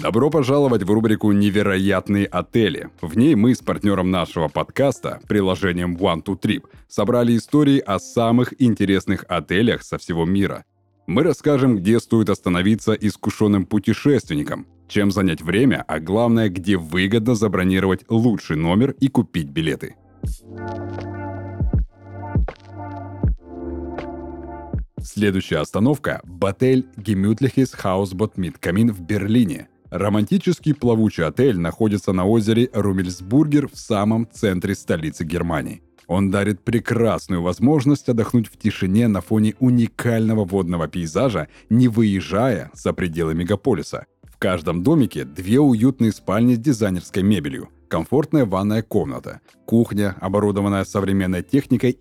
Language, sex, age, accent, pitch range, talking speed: Russian, male, 30-49, native, 95-115 Hz, 115 wpm